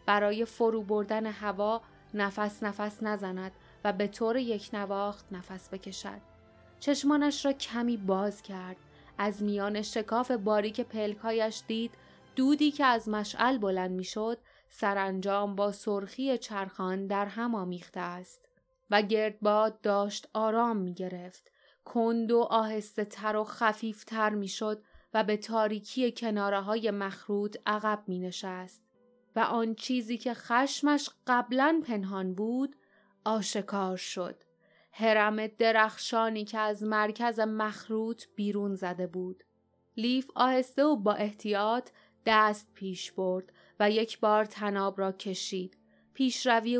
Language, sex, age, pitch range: Persian, female, 20-39, 200-230 Hz